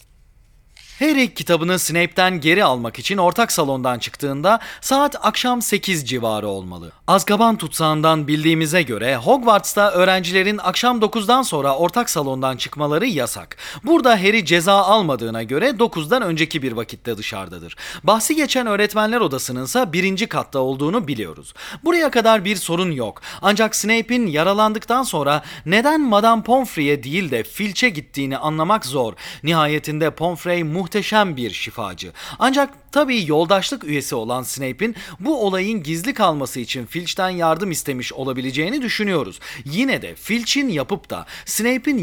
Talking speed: 130 wpm